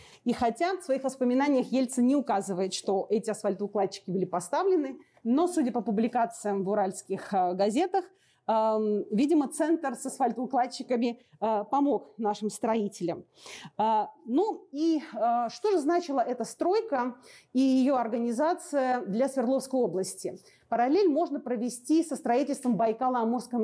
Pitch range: 215-280 Hz